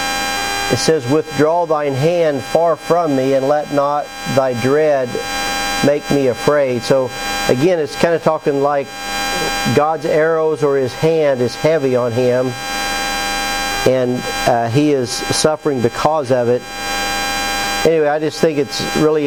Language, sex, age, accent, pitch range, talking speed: English, male, 50-69, American, 115-150 Hz, 145 wpm